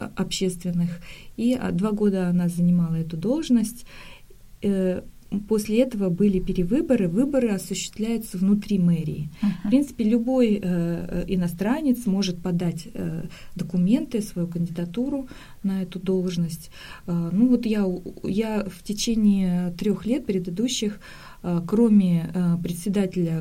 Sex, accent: female, native